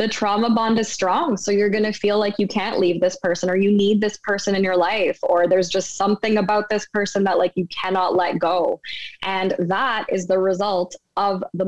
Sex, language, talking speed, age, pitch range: female, English, 225 wpm, 20-39, 190-235 Hz